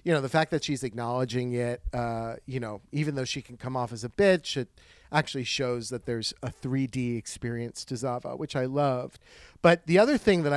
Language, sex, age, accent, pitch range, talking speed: English, male, 40-59, American, 120-155 Hz, 215 wpm